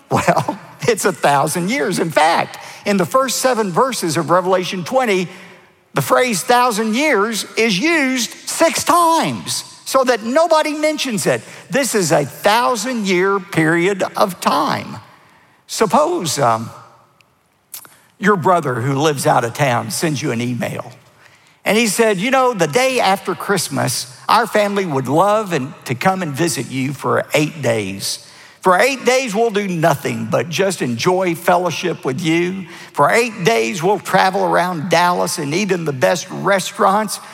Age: 50-69